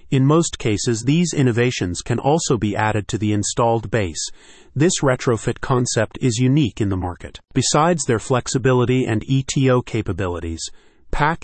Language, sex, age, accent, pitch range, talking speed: English, male, 30-49, American, 105-135 Hz, 145 wpm